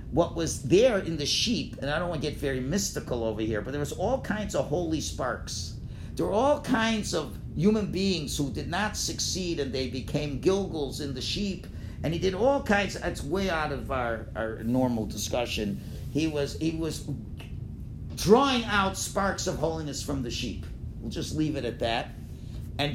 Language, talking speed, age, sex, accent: English, 195 wpm, 50-69, male, American